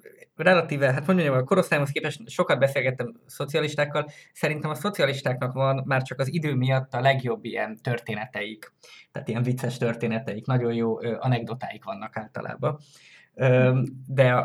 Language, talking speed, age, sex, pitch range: Hungarian, 135 wpm, 20-39, male, 115-145 Hz